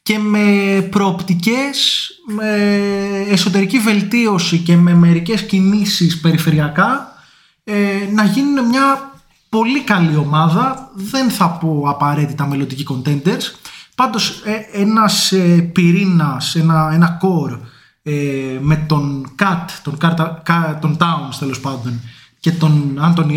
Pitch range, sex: 150-200 Hz, male